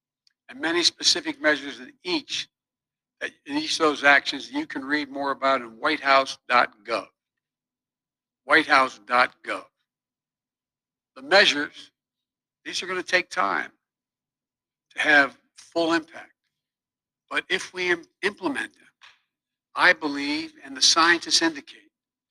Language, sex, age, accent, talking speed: English, male, 60-79, American, 105 wpm